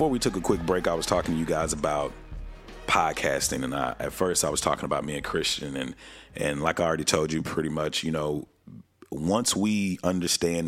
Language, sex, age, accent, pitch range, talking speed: English, male, 30-49, American, 80-90 Hz, 220 wpm